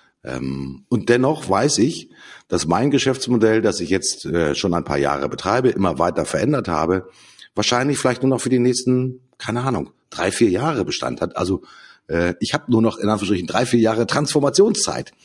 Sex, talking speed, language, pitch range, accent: male, 175 wpm, German, 95-125 Hz, German